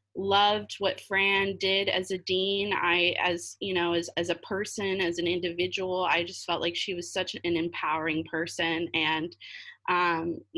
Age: 20-39